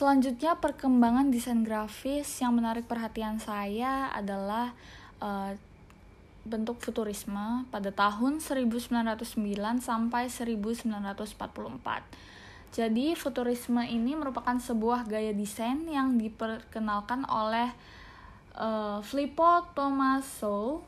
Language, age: Indonesian, 10-29